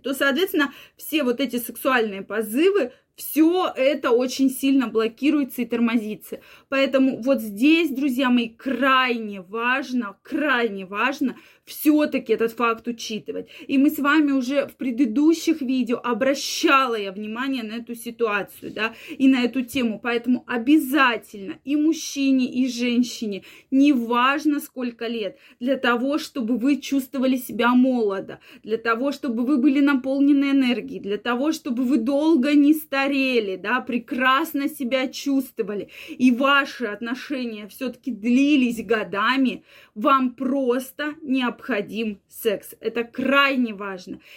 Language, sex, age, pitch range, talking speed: Russian, female, 20-39, 235-280 Hz, 130 wpm